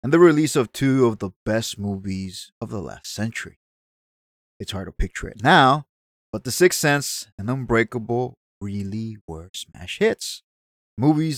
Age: 30-49